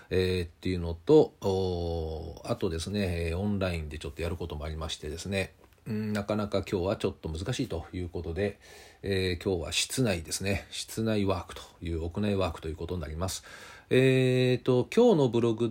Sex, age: male, 40-59